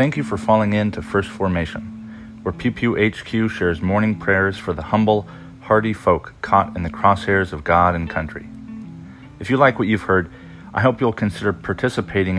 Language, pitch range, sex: English, 90-110 Hz, male